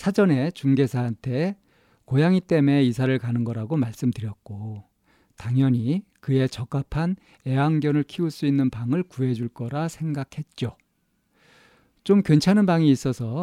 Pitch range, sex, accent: 125-160 Hz, male, native